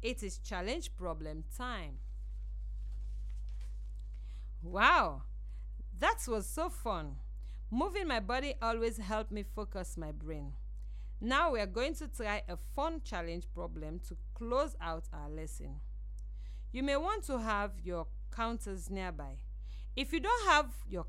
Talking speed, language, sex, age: 135 wpm, English, female, 40-59